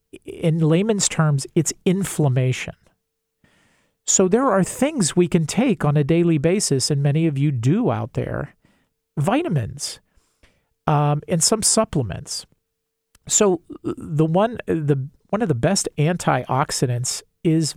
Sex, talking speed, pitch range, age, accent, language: male, 130 wpm, 130-165 Hz, 40-59, American, English